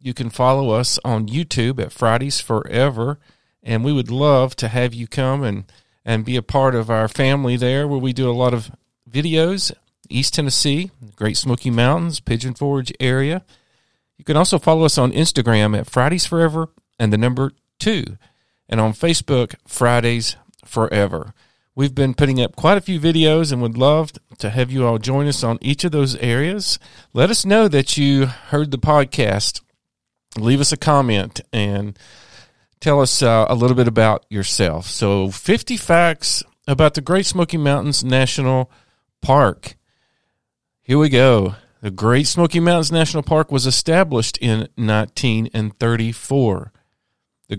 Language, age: English, 40-59